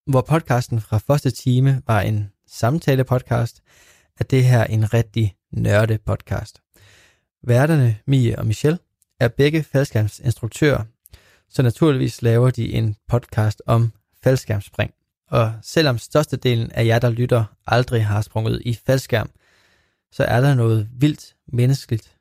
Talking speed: 130 wpm